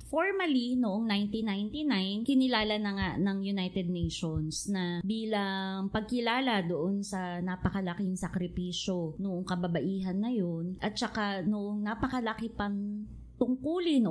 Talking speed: 110 wpm